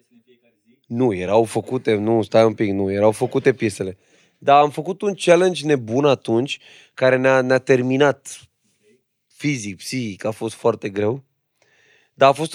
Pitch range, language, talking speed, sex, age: 115-145 Hz, Romanian, 150 wpm, male, 20-39